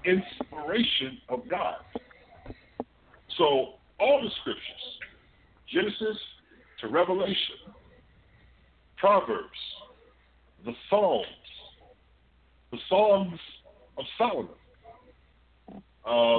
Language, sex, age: English, male, 50-69